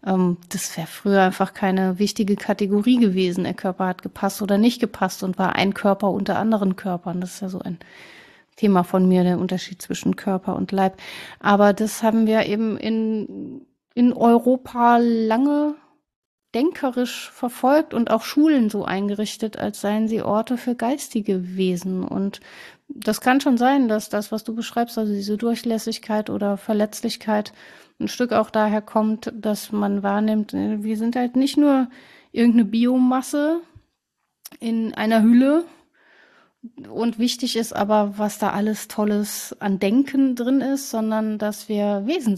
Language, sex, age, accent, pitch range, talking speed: German, female, 30-49, German, 200-240 Hz, 155 wpm